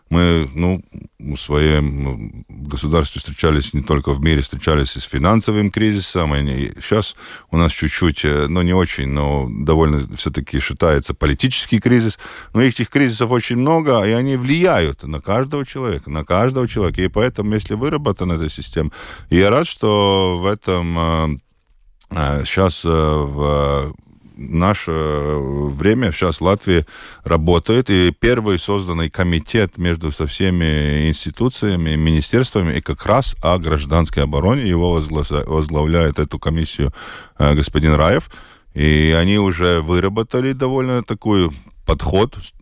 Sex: male